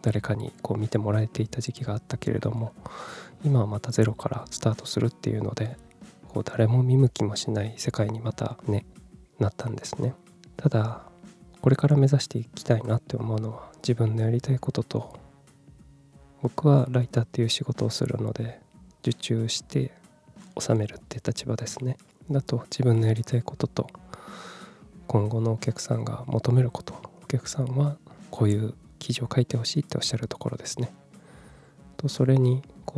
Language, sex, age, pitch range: Japanese, male, 20-39, 110-130 Hz